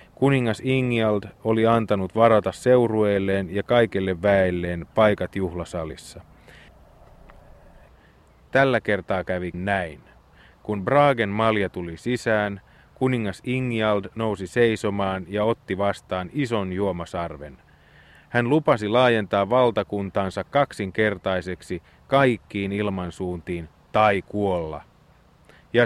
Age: 30-49